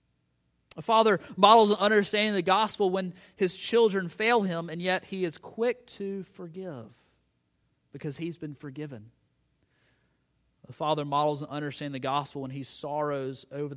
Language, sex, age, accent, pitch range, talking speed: English, male, 30-49, American, 110-180 Hz, 155 wpm